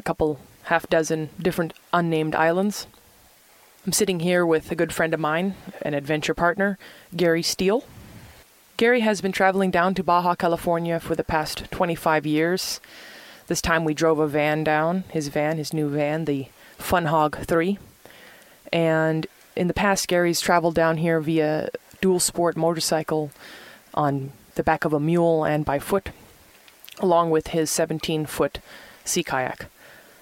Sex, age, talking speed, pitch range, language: female, 20-39, 145 wpm, 155-180 Hz, English